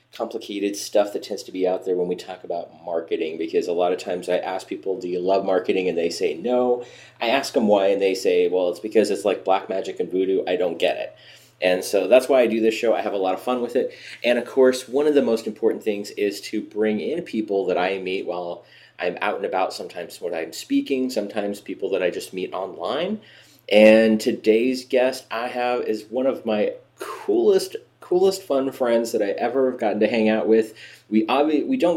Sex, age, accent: male, 30-49, American